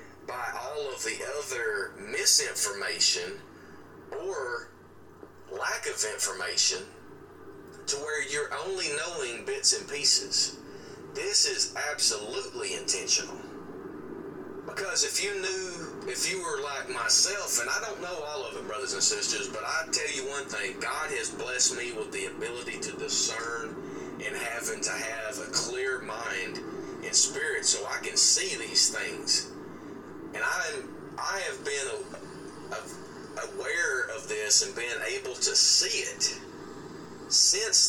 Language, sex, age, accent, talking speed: English, male, 30-49, American, 140 wpm